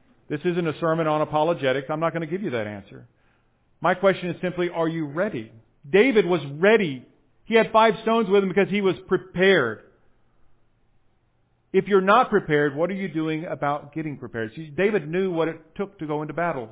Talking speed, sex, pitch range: 195 wpm, male, 115-165 Hz